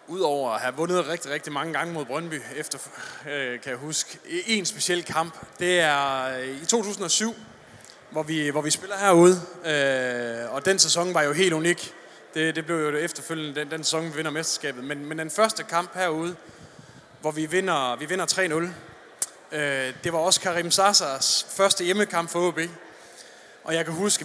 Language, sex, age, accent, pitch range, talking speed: Danish, male, 20-39, native, 155-195 Hz, 185 wpm